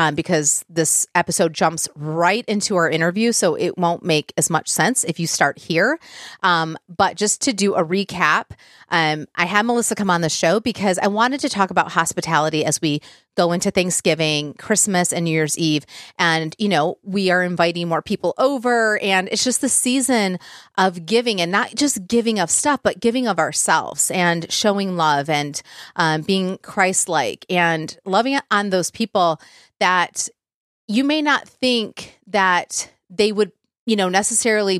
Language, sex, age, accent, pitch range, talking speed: English, female, 30-49, American, 165-210 Hz, 175 wpm